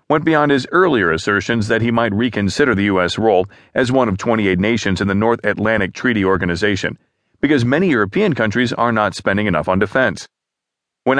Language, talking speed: English, 180 wpm